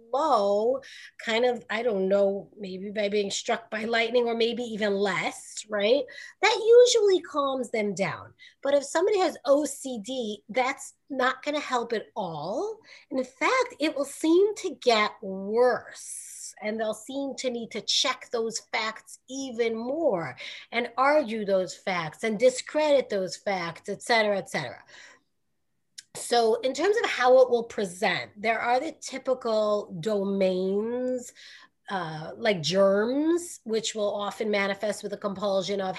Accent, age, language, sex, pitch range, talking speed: American, 30-49, English, female, 205-265 Hz, 145 wpm